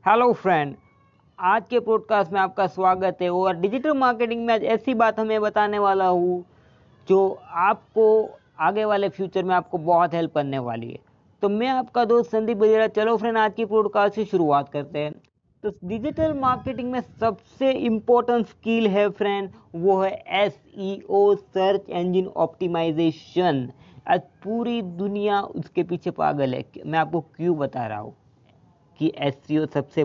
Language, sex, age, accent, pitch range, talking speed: Hindi, female, 20-39, native, 175-230 Hz, 155 wpm